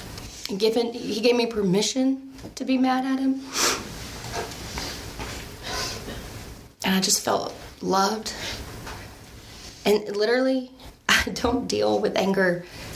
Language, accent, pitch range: English, American, 175-240 Hz